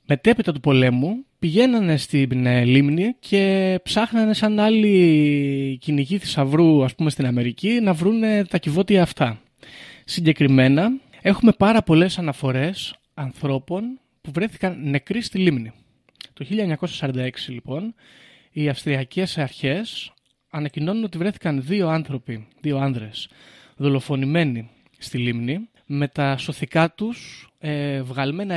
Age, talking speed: 20-39, 110 wpm